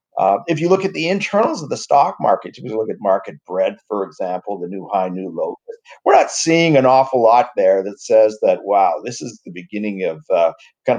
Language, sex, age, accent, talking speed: English, male, 50-69, American, 230 wpm